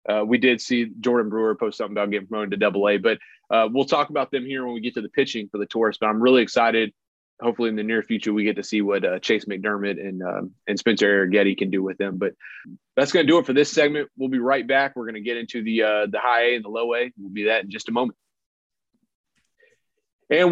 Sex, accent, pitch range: male, American, 110-140 Hz